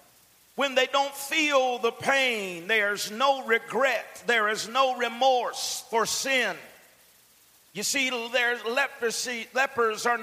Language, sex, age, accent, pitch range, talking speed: English, male, 50-69, American, 230-270 Hz, 115 wpm